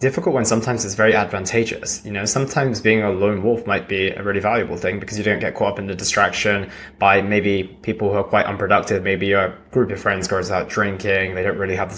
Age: 20-39